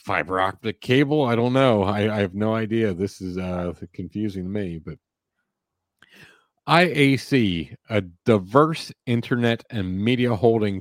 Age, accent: 40-59, American